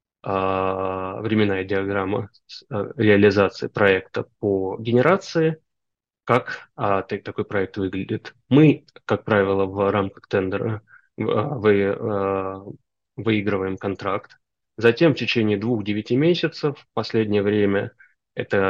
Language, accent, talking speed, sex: Russian, native, 95 wpm, male